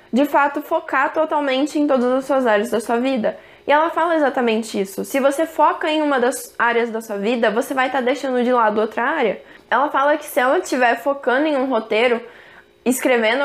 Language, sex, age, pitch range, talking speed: Portuguese, female, 10-29, 235-295 Hz, 205 wpm